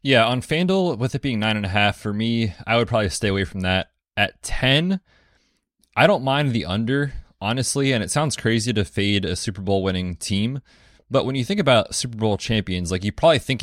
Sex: male